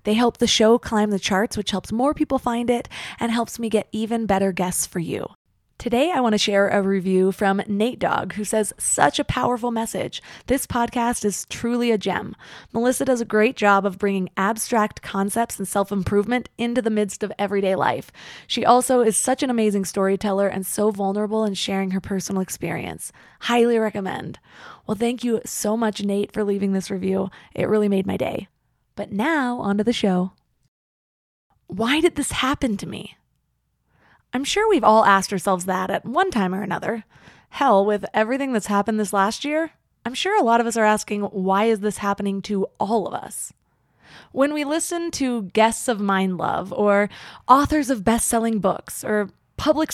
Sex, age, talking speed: female, 20-39, 185 wpm